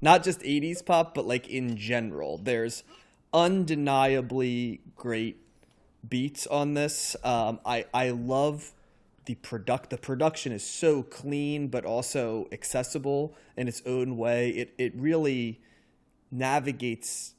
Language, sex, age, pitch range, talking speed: English, male, 30-49, 115-140 Hz, 125 wpm